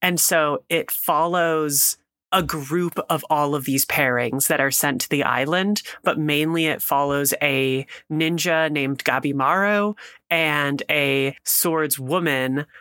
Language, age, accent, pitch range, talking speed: English, 30-49, American, 140-170 Hz, 130 wpm